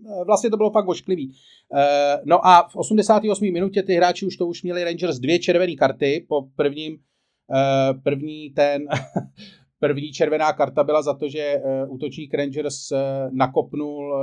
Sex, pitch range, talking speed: male, 135-155 Hz, 145 wpm